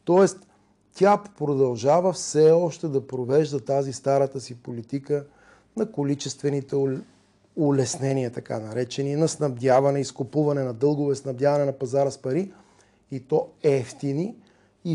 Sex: male